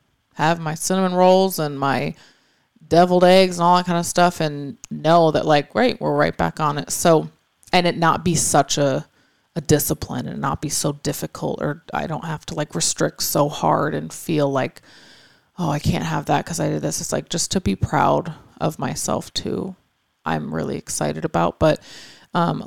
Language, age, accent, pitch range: English, 30-49, American, 135-170 Hz